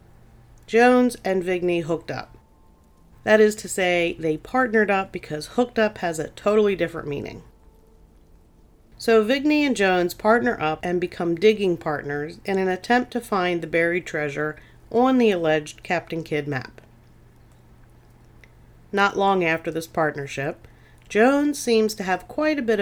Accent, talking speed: American, 145 wpm